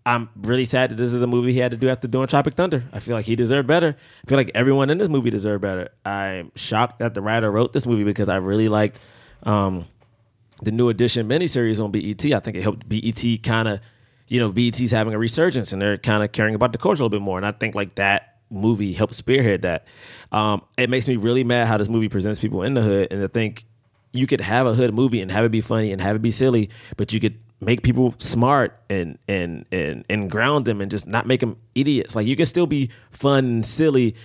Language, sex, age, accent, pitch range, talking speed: English, male, 20-39, American, 110-135 Hz, 250 wpm